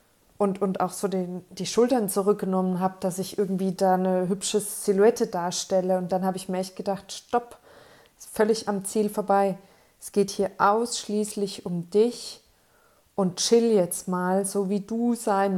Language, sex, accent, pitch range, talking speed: German, female, German, 185-205 Hz, 170 wpm